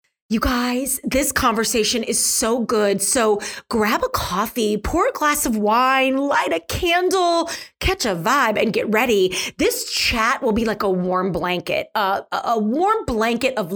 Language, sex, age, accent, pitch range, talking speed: English, female, 30-49, American, 220-330 Hz, 165 wpm